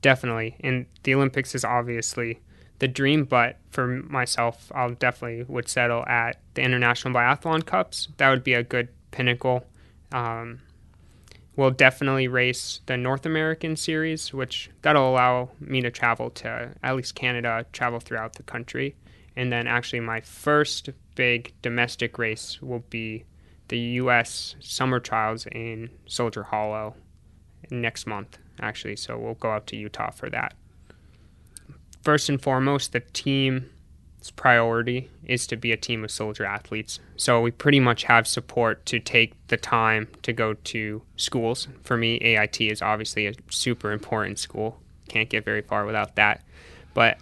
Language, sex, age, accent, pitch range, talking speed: English, male, 20-39, American, 110-125 Hz, 155 wpm